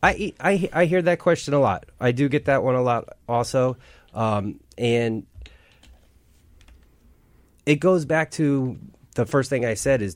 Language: English